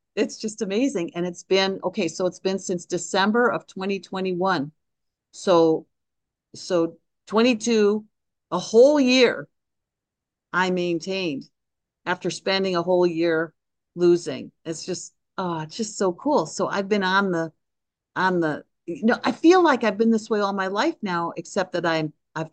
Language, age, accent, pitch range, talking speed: English, 50-69, American, 170-210 Hz, 155 wpm